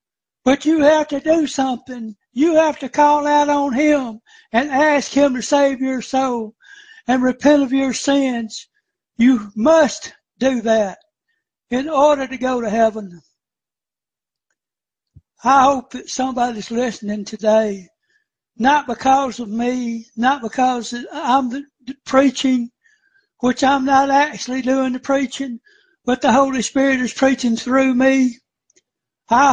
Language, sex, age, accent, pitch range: Japanese, male, 60-79, American, 250-280 Hz